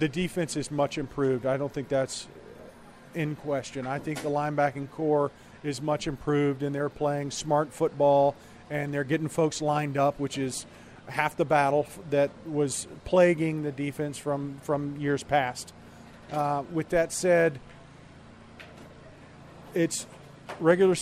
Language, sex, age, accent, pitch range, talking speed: English, male, 40-59, American, 140-160 Hz, 145 wpm